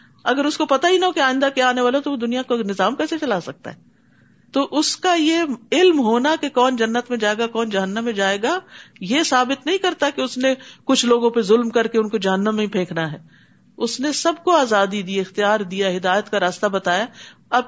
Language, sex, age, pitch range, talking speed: Urdu, female, 50-69, 215-285 Hz, 240 wpm